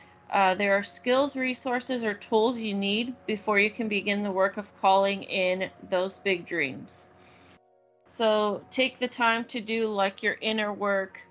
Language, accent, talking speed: English, American, 165 wpm